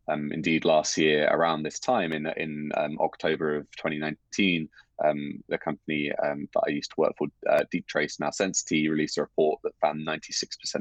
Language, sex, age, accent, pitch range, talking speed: Danish, male, 20-39, British, 75-80 Hz, 190 wpm